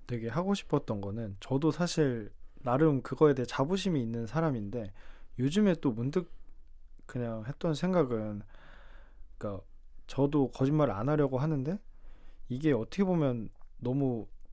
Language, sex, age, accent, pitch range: Korean, male, 20-39, native, 110-155 Hz